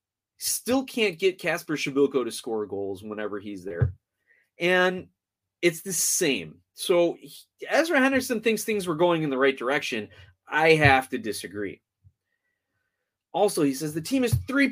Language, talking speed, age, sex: English, 150 wpm, 20-39, male